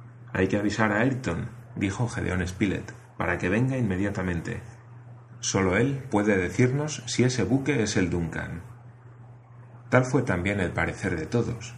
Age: 30-49